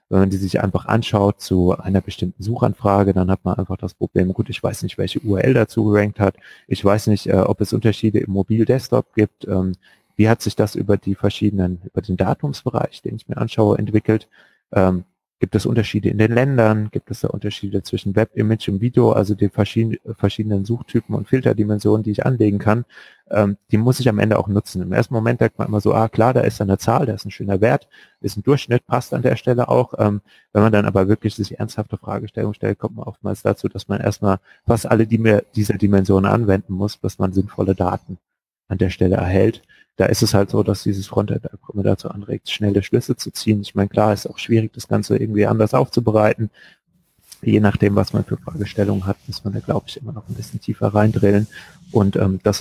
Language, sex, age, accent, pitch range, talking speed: German, male, 30-49, German, 100-110 Hz, 215 wpm